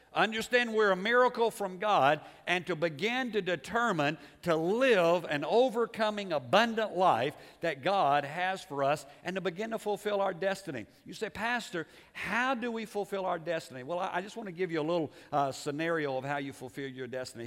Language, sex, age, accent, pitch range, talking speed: English, male, 60-79, American, 145-205 Hz, 190 wpm